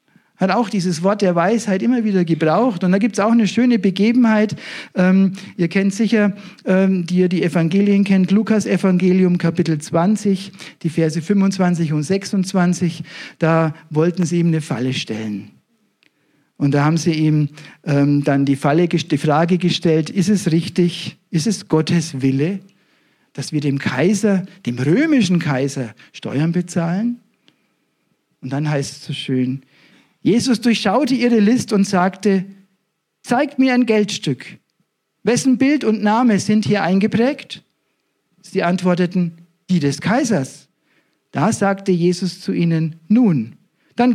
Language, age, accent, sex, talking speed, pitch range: German, 50-69, German, male, 145 wpm, 155-205 Hz